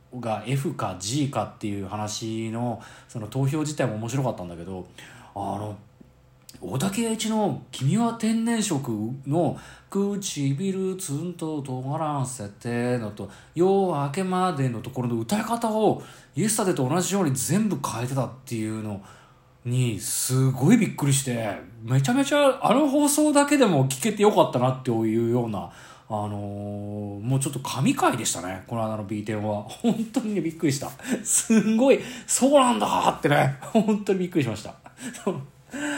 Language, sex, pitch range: Japanese, male, 120-200 Hz